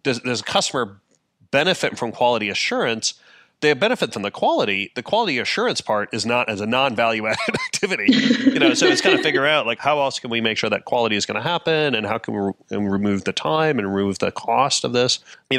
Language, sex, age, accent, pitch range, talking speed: English, male, 30-49, American, 100-130 Hz, 235 wpm